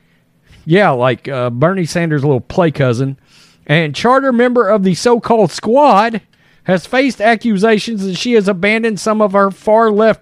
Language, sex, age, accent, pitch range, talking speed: English, male, 40-59, American, 160-235 Hz, 155 wpm